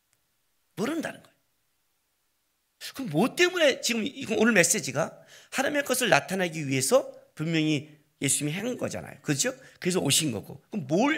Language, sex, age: Korean, male, 40-59